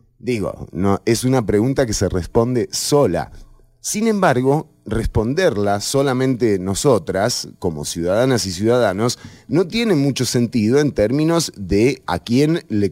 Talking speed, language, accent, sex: 125 wpm, English, Argentinian, male